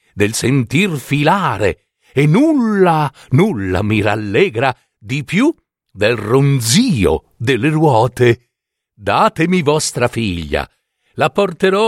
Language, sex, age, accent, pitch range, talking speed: Italian, male, 60-79, native, 115-190 Hz, 95 wpm